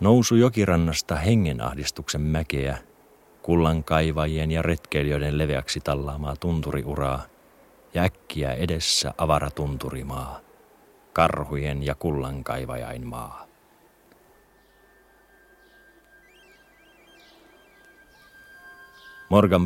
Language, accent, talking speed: Finnish, native, 60 wpm